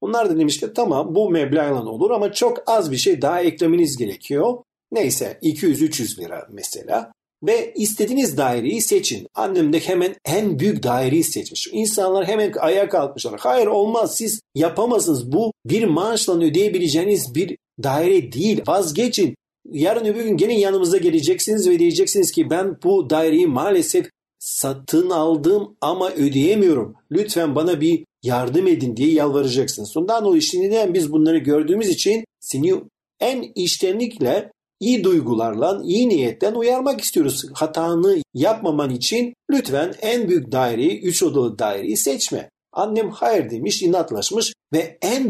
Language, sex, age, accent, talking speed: Turkish, male, 50-69, native, 135 wpm